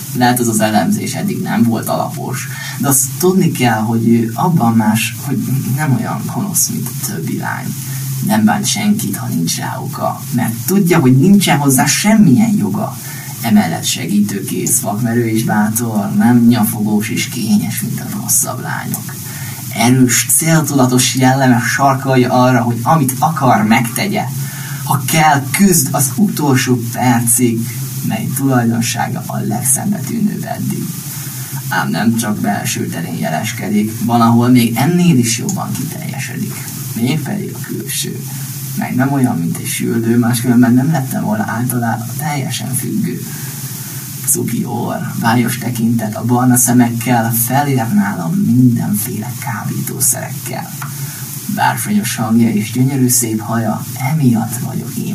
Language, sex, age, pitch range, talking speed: Hungarian, male, 20-39, 120-140 Hz, 130 wpm